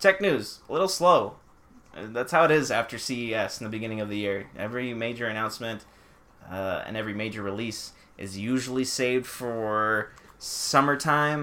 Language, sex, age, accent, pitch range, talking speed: English, male, 20-39, American, 105-135 Hz, 160 wpm